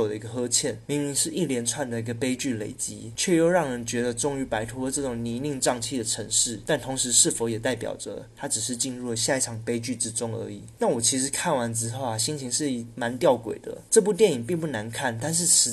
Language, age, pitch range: Chinese, 20-39, 115-135 Hz